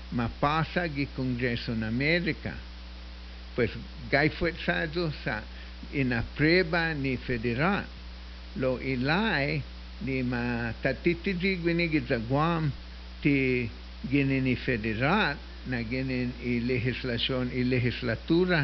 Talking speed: 95 wpm